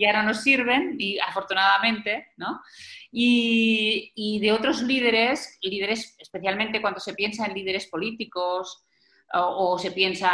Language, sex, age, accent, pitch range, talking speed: Spanish, female, 30-49, Spanish, 190-235 Hz, 140 wpm